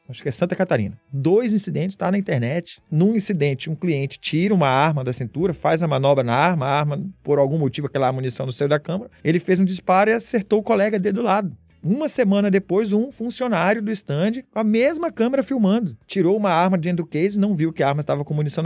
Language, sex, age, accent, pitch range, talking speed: Portuguese, male, 40-59, Brazilian, 130-200 Hz, 230 wpm